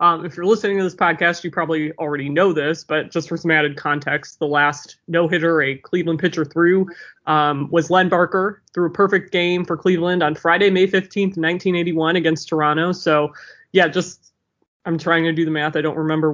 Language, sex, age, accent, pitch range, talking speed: English, male, 20-39, American, 155-195 Hz, 200 wpm